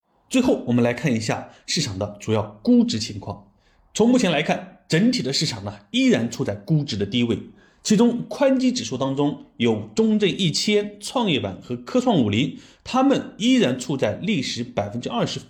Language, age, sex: Chinese, 30-49, male